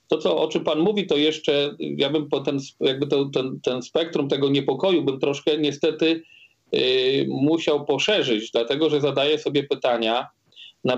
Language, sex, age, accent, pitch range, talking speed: Polish, male, 40-59, native, 120-150 Hz, 135 wpm